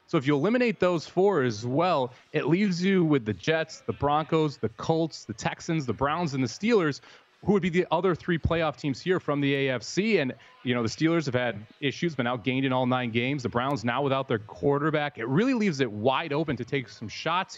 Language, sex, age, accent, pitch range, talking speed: English, male, 30-49, American, 130-165 Hz, 230 wpm